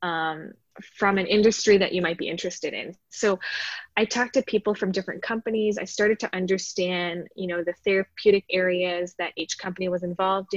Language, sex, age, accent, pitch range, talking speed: English, female, 20-39, American, 175-200 Hz, 180 wpm